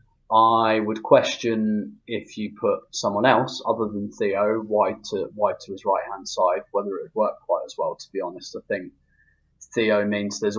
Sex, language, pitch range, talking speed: male, English, 105-135 Hz, 195 wpm